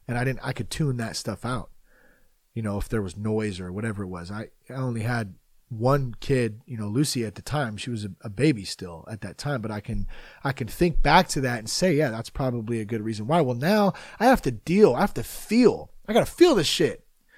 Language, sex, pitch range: English, male, 115-185 Hz